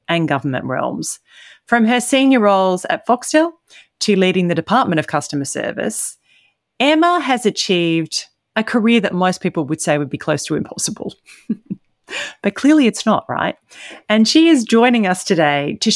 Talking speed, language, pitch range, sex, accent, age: 160 wpm, English, 160-230 Hz, female, Australian, 40-59